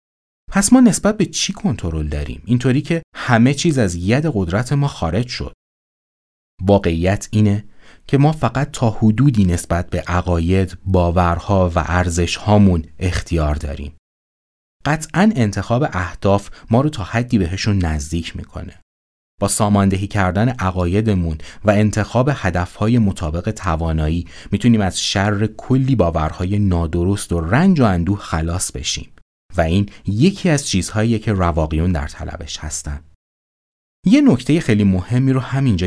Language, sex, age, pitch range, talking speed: Persian, male, 30-49, 85-115 Hz, 135 wpm